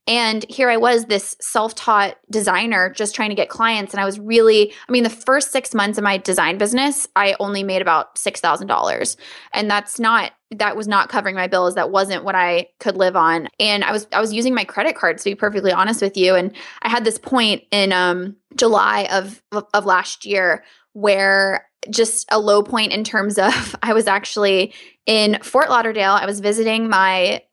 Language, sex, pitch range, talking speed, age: English, female, 195-225 Hz, 200 wpm, 20-39